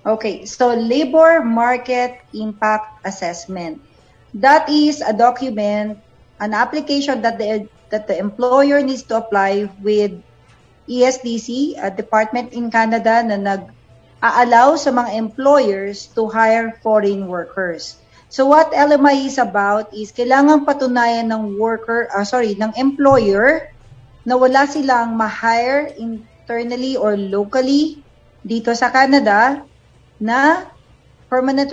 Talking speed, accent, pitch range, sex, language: 115 wpm, native, 210-260 Hz, female, Filipino